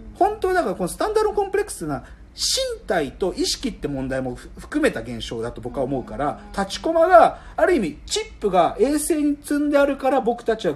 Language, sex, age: Japanese, male, 40-59